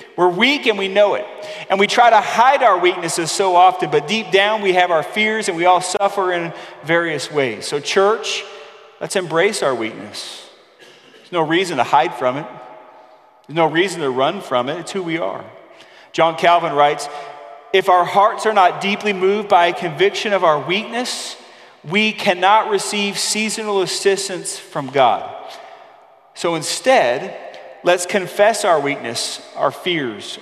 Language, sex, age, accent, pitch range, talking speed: English, male, 40-59, American, 170-210 Hz, 165 wpm